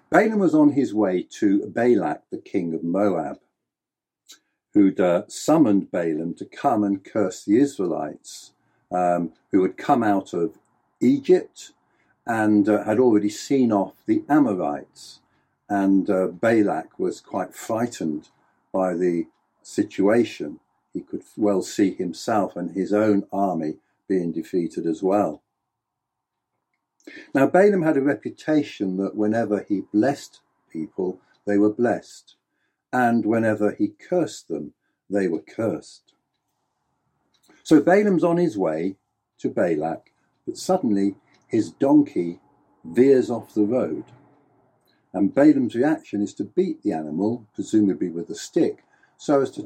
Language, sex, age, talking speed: English, male, 50-69, 130 wpm